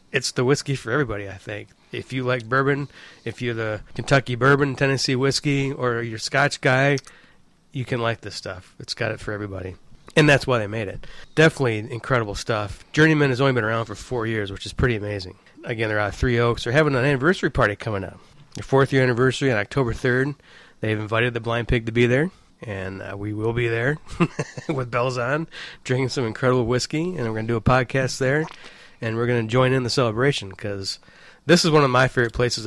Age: 30-49